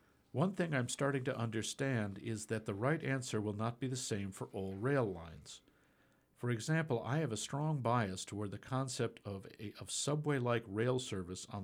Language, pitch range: English, 100-130 Hz